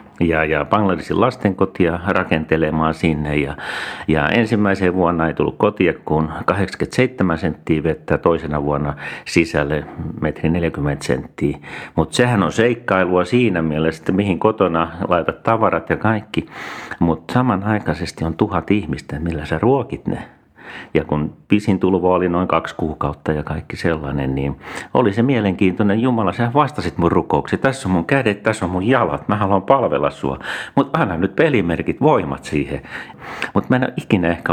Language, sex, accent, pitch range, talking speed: Finnish, male, native, 80-115 Hz, 155 wpm